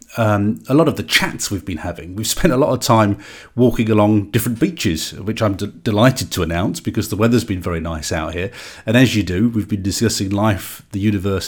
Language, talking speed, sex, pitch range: English, 220 wpm, male, 95-115 Hz